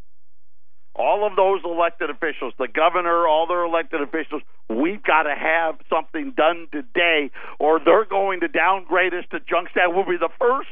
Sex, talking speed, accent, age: male, 175 wpm, American, 50-69